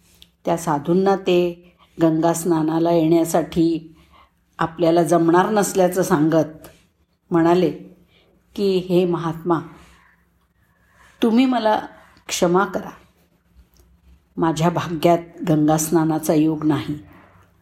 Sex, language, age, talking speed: female, Marathi, 50-69, 75 wpm